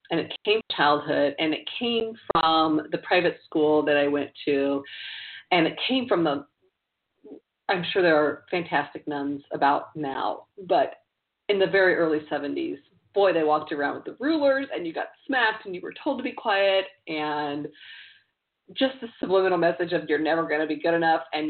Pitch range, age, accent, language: 155-225 Hz, 40-59, American, English